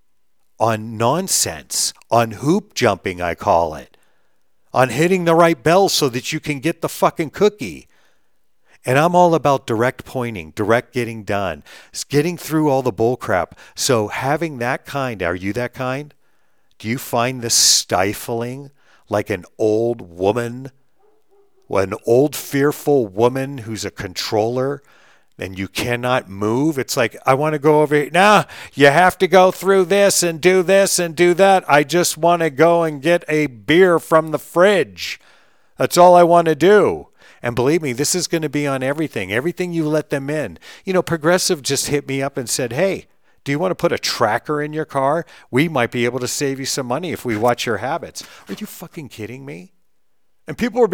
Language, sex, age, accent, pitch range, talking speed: English, male, 50-69, American, 125-175 Hz, 185 wpm